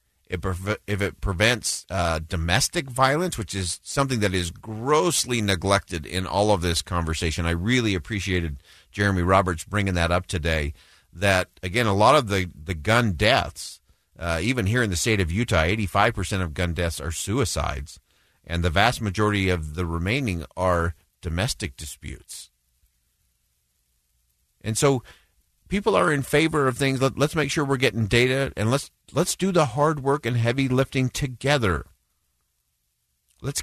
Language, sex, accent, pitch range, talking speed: English, male, American, 85-125 Hz, 155 wpm